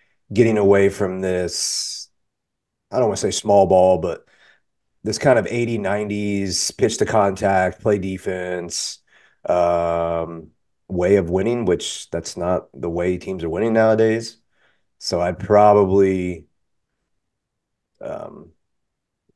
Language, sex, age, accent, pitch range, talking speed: English, male, 30-49, American, 85-105 Hz, 120 wpm